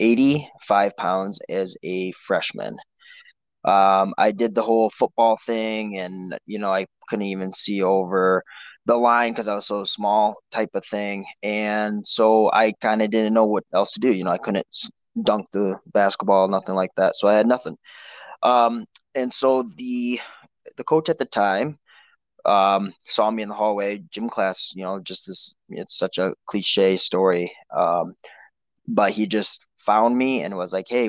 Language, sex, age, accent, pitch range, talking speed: English, male, 20-39, American, 95-115 Hz, 175 wpm